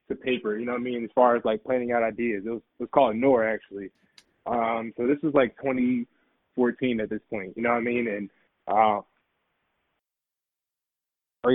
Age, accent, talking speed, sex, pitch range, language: 20-39, American, 195 wpm, male, 120-135 Hz, English